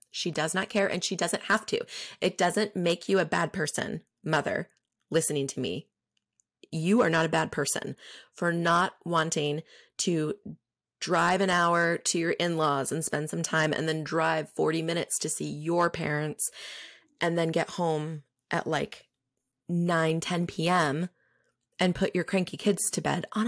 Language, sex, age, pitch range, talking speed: English, female, 20-39, 165-205 Hz, 170 wpm